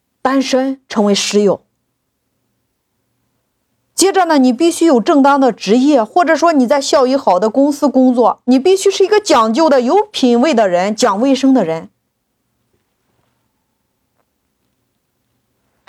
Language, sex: Chinese, female